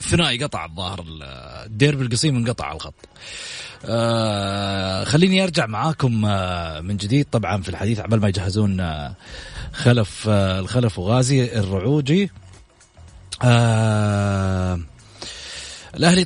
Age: 30-49